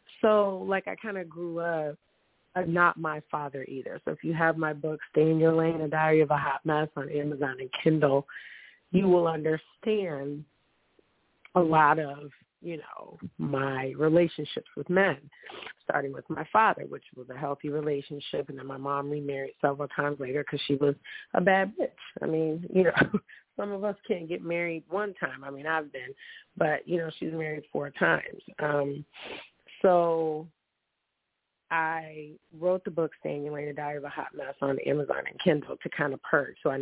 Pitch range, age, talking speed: 145-175 Hz, 30-49, 185 wpm